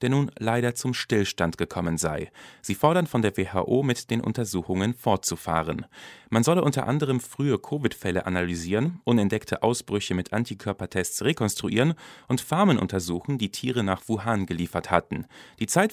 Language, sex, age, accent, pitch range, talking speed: German, male, 40-59, German, 95-135 Hz, 145 wpm